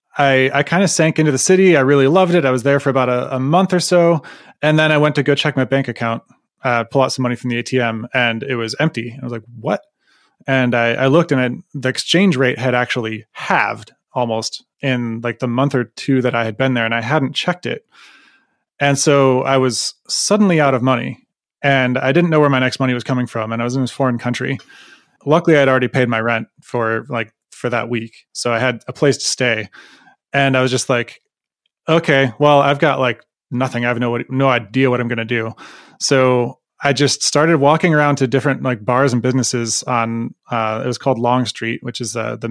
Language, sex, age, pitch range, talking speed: English, male, 20-39, 120-140 Hz, 230 wpm